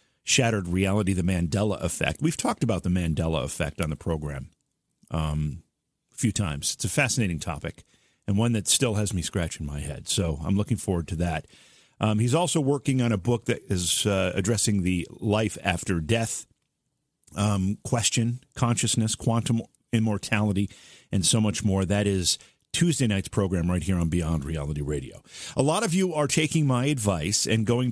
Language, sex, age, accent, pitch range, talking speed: English, male, 40-59, American, 95-140 Hz, 175 wpm